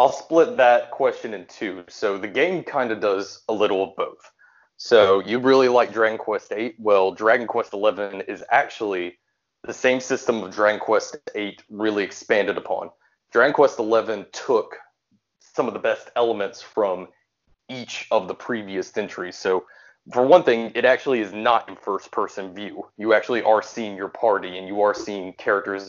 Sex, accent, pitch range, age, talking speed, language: male, American, 100-115 Hz, 20-39, 180 wpm, English